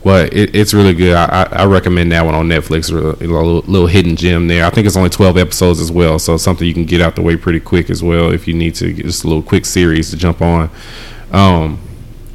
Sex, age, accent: male, 20-39, American